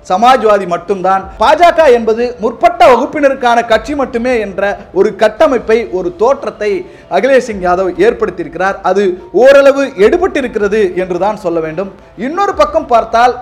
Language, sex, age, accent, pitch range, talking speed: Tamil, male, 50-69, native, 190-255 Hz, 115 wpm